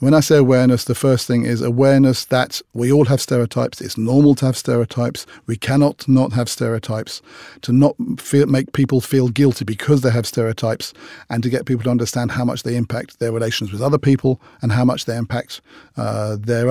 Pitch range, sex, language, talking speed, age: 120-140 Hz, male, French, 205 wpm, 40-59